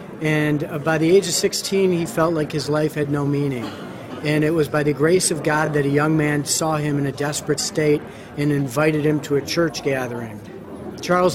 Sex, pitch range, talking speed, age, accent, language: male, 150-170 Hz, 210 wpm, 40-59, American, English